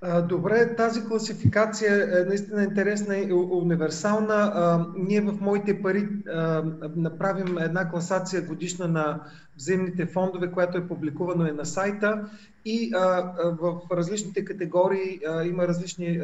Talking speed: 115 wpm